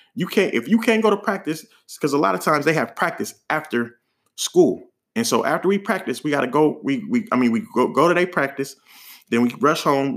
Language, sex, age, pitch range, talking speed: English, male, 30-49, 130-215 Hz, 235 wpm